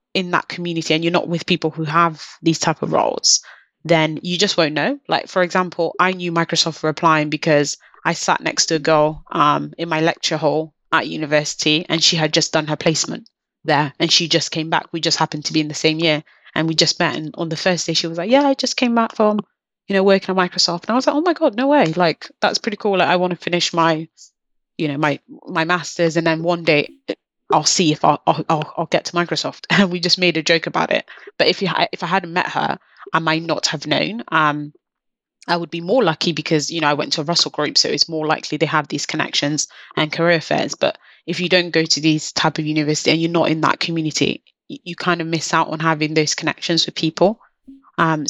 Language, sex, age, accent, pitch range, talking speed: English, female, 20-39, British, 155-175 Hz, 250 wpm